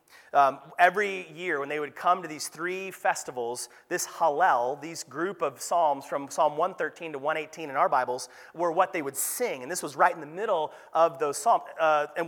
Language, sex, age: English, male, 30-49